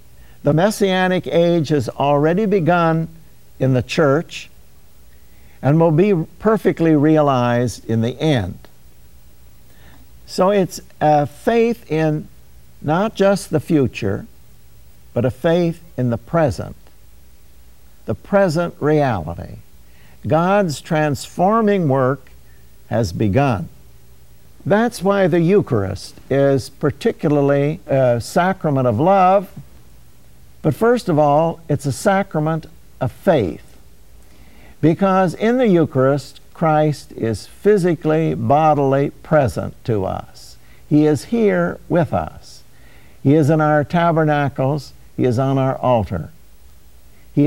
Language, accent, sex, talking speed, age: English, American, male, 110 wpm, 60-79